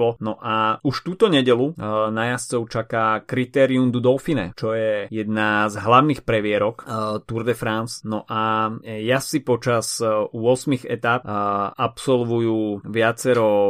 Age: 20-39